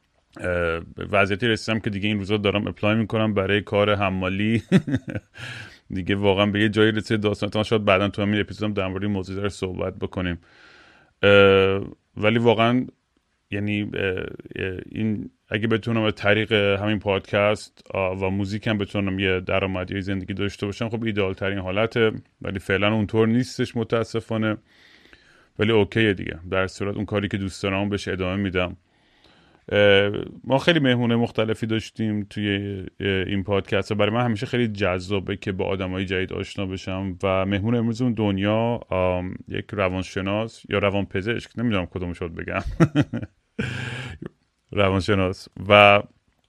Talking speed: 130 wpm